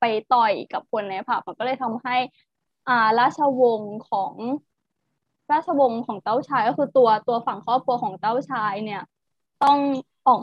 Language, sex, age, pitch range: Thai, female, 20-39, 215-265 Hz